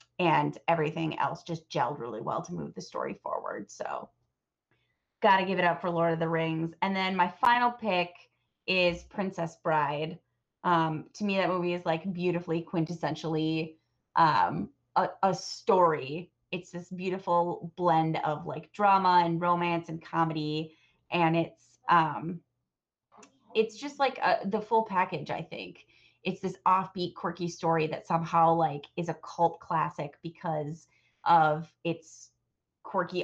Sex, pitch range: female, 160-180 Hz